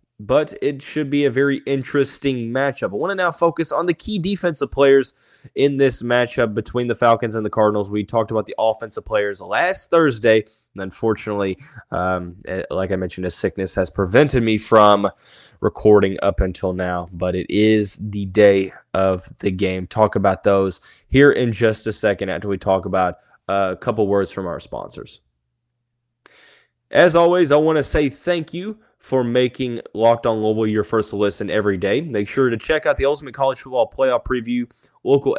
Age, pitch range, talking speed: 20-39, 100-135 Hz, 185 wpm